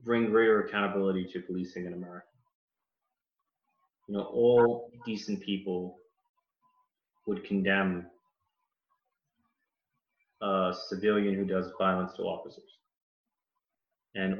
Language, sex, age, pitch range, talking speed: English, male, 30-49, 95-120 Hz, 90 wpm